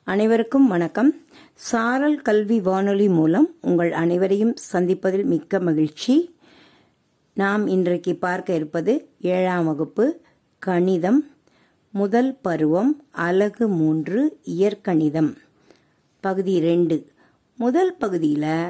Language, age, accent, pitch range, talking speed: Tamil, 50-69, native, 165-240 Hz, 85 wpm